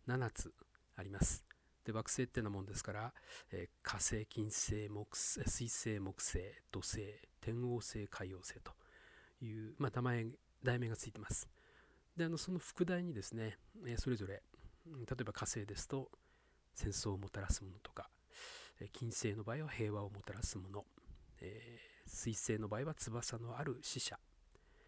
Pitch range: 105-135 Hz